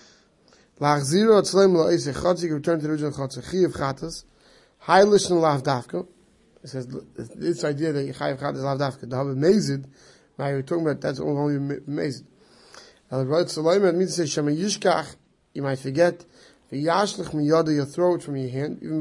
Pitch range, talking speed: 140-175 Hz, 100 wpm